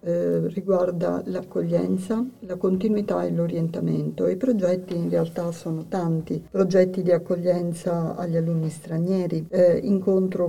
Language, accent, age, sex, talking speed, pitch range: Italian, native, 50-69, female, 120 wpm, 165-185 Hz